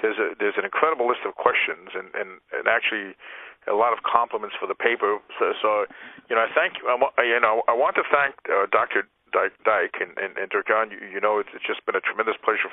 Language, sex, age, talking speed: English, male, 50-69, 240 wpm